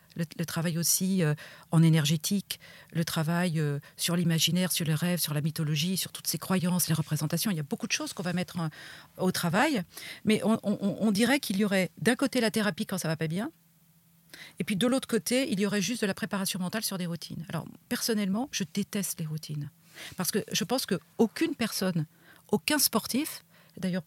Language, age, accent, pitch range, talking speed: French, 40-59, French, 165-210 Hz, 200 wpm